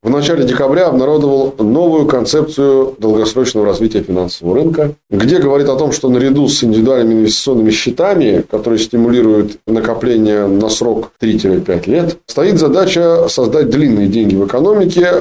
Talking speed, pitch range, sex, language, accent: 135 wpm, 115-165 Hz, male, Russian, native